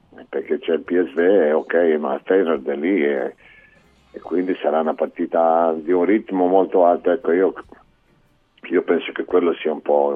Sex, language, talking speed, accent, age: male, Italian, 170 wpm, native, 50-69